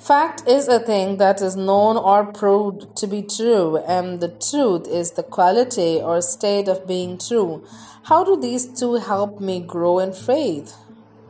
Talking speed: 170 wpm